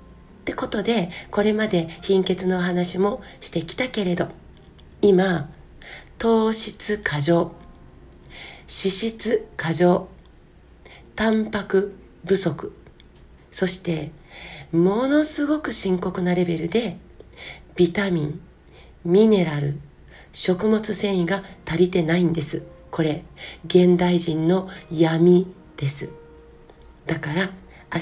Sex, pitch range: female, 165-200 Hz